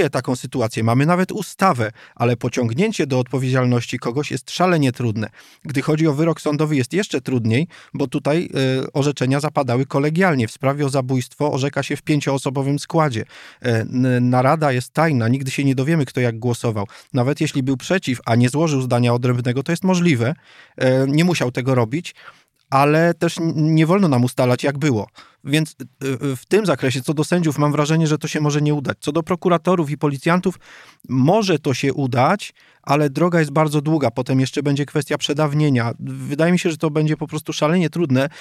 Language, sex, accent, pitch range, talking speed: Polish, male, native, 130-160 Hz, 175 wpm